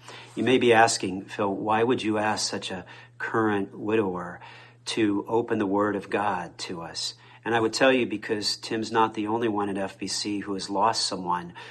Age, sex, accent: 40-59, male, American